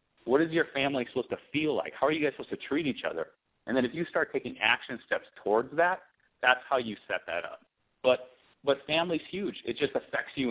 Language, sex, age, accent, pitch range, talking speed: English, male, 40-59, American, 105-150 Hz, 235 wpm